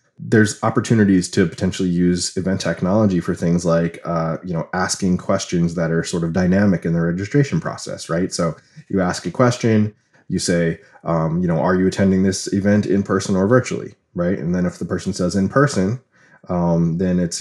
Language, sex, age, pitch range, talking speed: English, male, 20-39, 85-105 Hz, 195 wpm